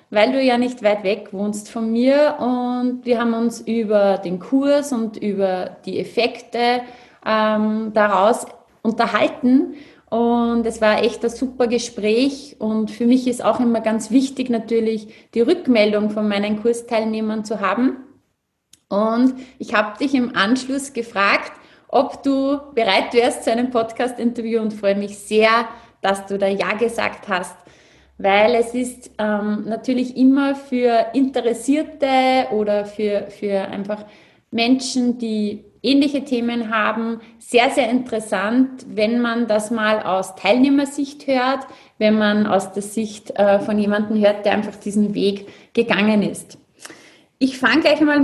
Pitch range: 210-255 Hz